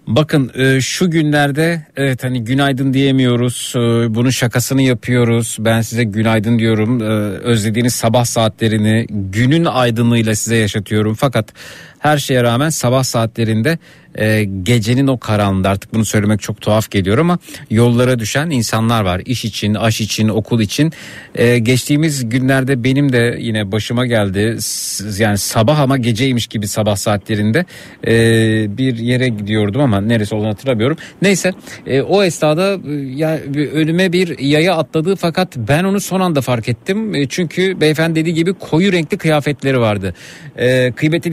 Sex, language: male, Turkish